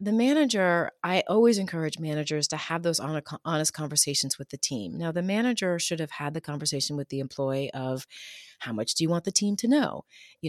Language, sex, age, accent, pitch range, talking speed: English, female, 30-49, American, 135-185 Hz, 205 wpm